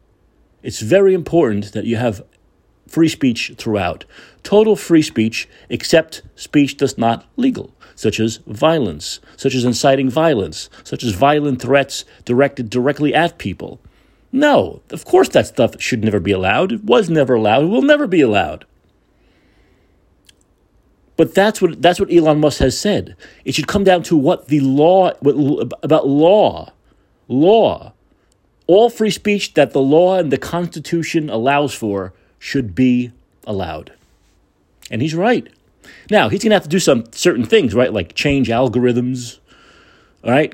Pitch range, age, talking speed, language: 110-160 Hz, 40-59, 150 wpm, English